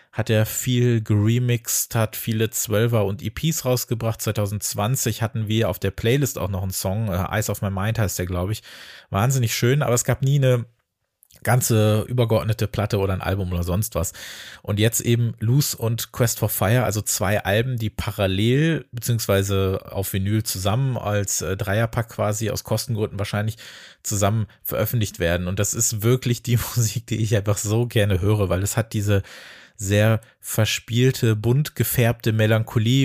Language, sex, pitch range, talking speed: German, male, 105-120 Hz, 170 wpm